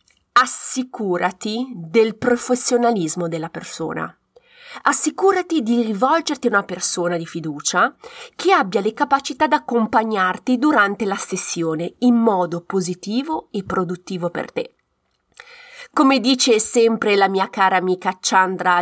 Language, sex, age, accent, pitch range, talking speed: Italian, female, 30-49, native, 185-275 Hz, 120 wpm